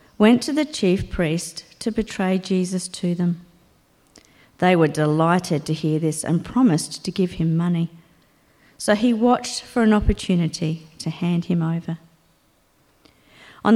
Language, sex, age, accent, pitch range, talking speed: English, female, 50-69, Australian, 165-210 Hz, 145 wpm